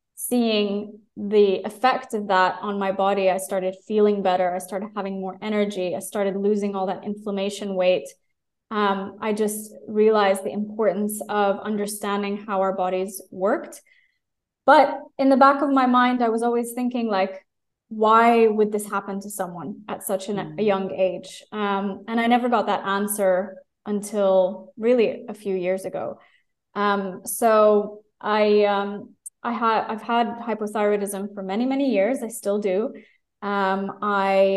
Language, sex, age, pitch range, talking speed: English, female, 20-39, 195-220 Hz, 155 wpm